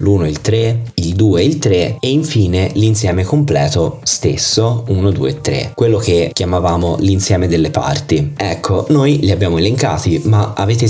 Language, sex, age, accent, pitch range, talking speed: Italian, male, 20-39, native, 90-115 Hz, 170 wpm